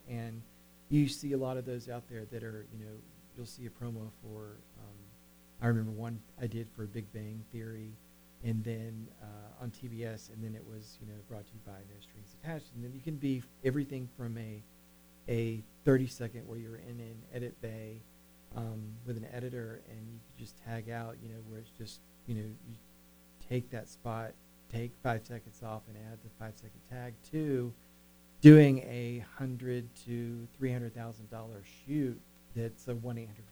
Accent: American